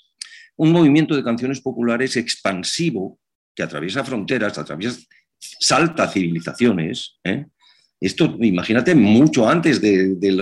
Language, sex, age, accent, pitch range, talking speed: Spanish, male, 50-69, Spanish, 95-135 Hz, 110 wpm